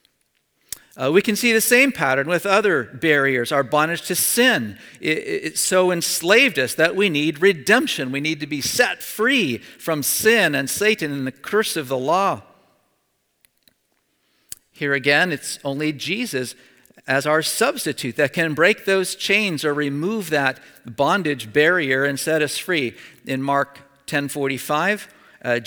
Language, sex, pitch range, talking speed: English, male, 130-165 Hz, 145 wpm